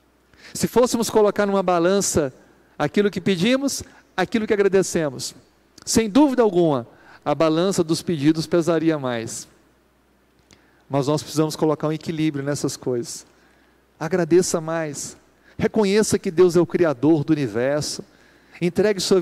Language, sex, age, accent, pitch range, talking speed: Portuguese, male, 50-69, Brazilian, 150-195 Hz, 125 wpm